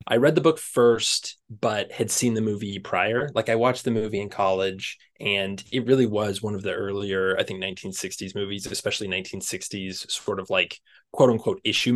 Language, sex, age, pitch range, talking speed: English, male, 20-39, 100-120 Hz, 190 wpm